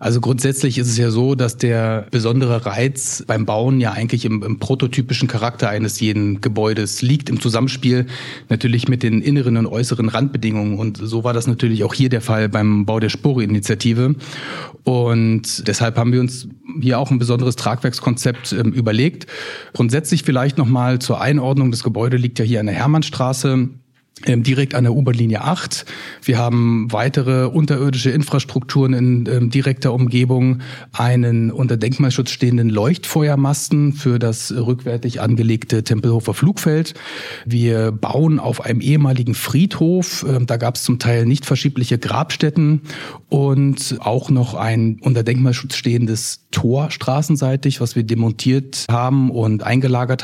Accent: German